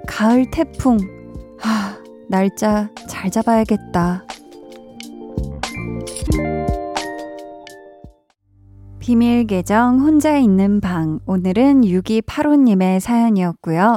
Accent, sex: native, female